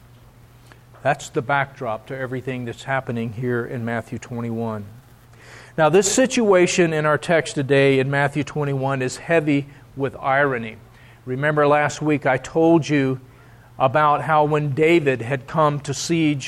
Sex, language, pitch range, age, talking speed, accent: male, English, 130-170 Hz, 40-59, 140 wpm, American